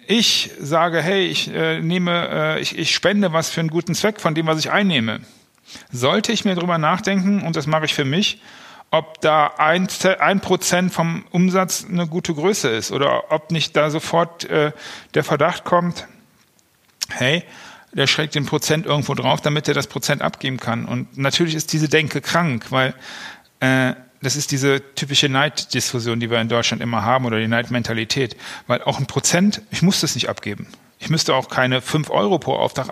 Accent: German